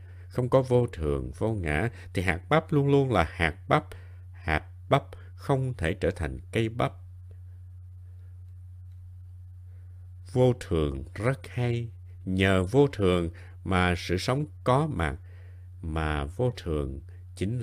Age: 60-79